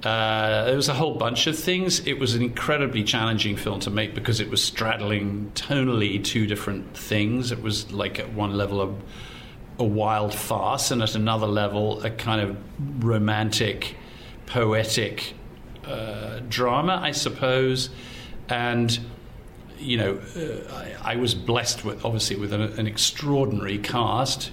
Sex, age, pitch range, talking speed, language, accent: male, 50-69, 105-125 Hz, 150 wpm, English, British